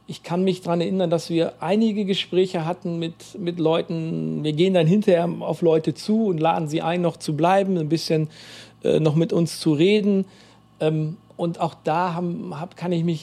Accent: German